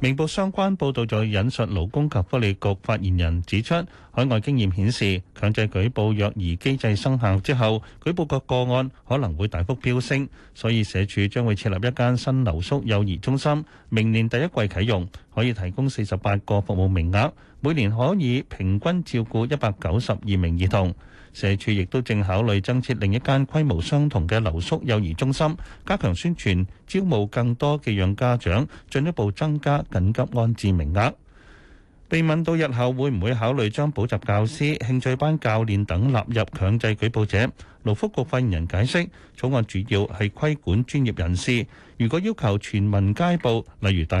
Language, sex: Chinese, male